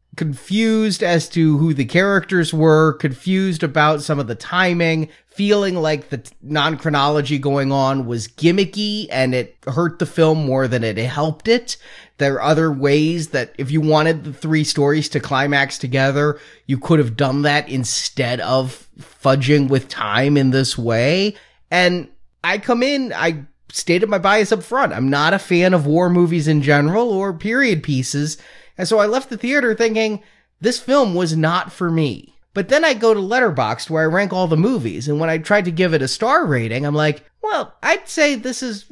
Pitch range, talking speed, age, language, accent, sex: 140-205 Hz, 190 wpm, 30-49, English, American, male